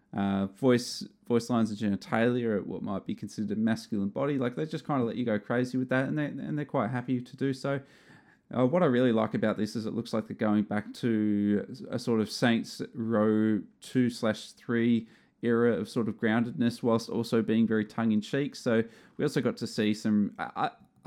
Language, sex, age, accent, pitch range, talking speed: English, male, 20-39, Australian, 105-120 Hz, 210 wpm